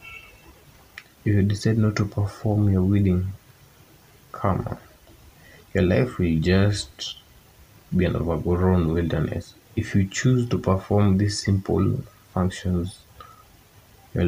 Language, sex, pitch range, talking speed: Swahili, male, 90-105 Hz, 110 wpm